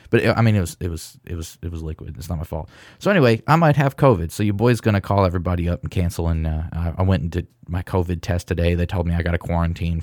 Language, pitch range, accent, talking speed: English, 85-115 Hz, American, 285 wpm